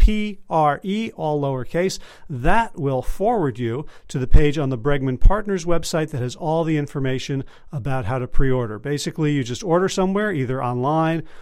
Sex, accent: male, American